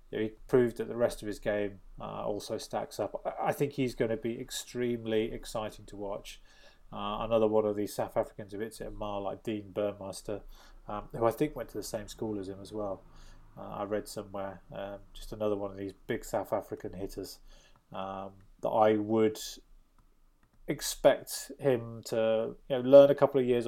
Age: 20-39